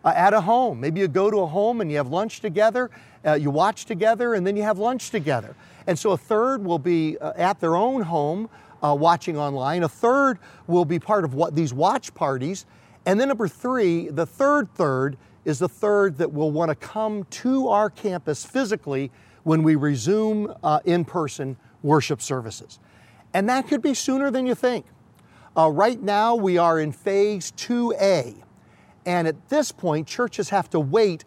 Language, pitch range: English, 150-215 Hz